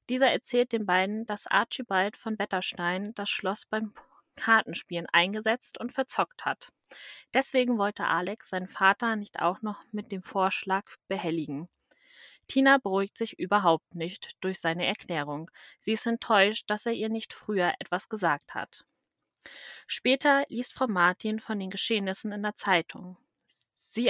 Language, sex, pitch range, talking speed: German, female, 185-240 Hz, 145 wpm